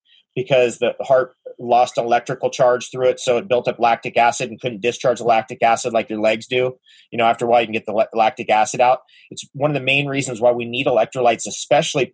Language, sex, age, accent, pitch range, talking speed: English, male, 30-49, American, 125-165 Hz, 230 wpm